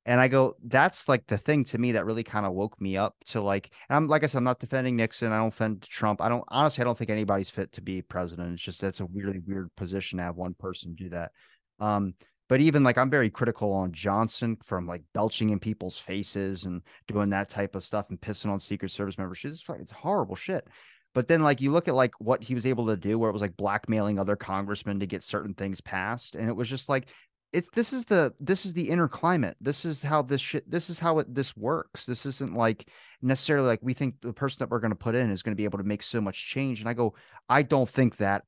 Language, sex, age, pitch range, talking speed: English, male, 30-49, 100-130 Hz, 265 wpm